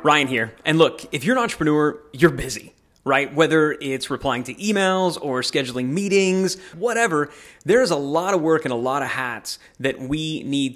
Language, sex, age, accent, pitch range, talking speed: English, male, 30-49, American, 120-145 Hz, 185 wpm